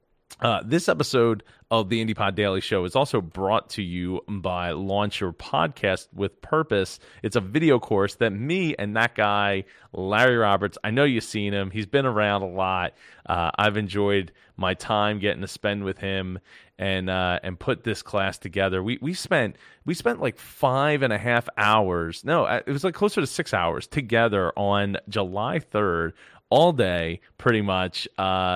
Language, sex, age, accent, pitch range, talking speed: English, male, 30-49, American, 95-130 Hz, 185 wpm